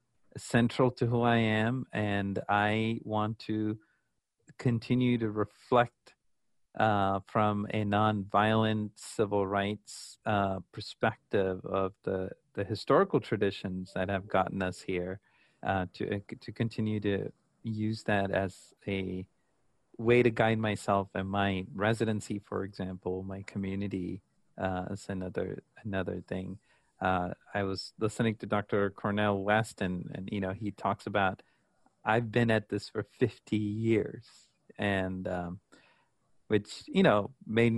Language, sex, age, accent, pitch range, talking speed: English, male, 40-59, American, 100-115 Hz, 130 wpm